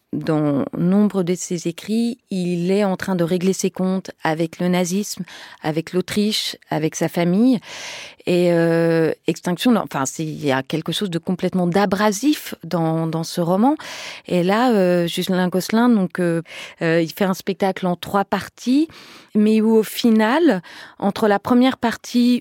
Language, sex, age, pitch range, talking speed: French, female, 30-49, 165-205 Hz, 165 wpm